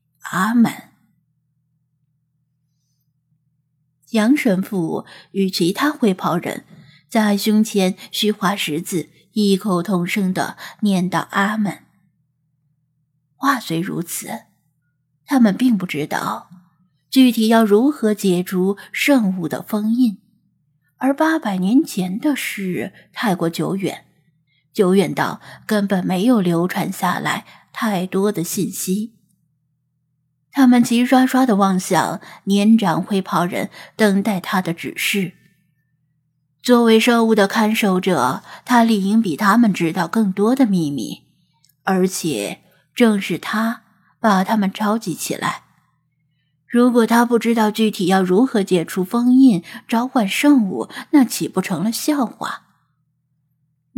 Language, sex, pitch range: Chinese, female, 160-215 Hz